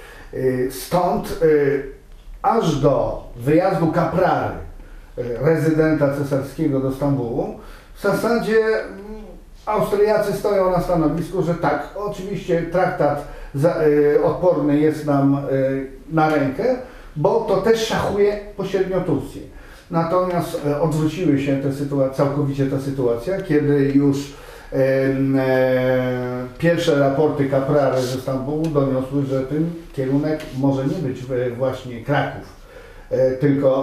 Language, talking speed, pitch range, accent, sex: Polish, 95 wpm, 135-165 Hz, native, male